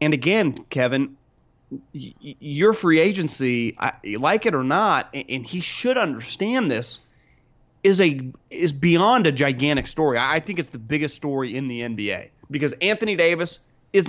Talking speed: 160 wpm